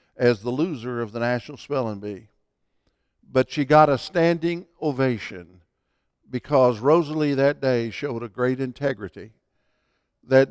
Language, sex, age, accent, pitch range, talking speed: English, male, 60-79, American, 115-150 Hz, 130 wpm